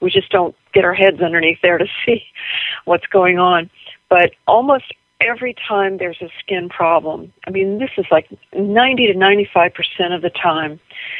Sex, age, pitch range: female, 50-69, 170-200 Hz